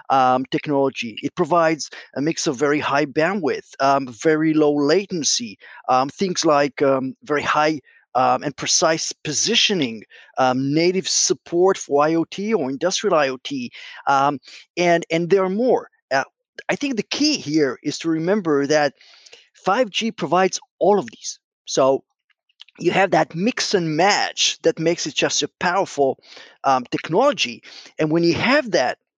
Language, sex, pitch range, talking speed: English, male, 145-210 Hz, 150 wpm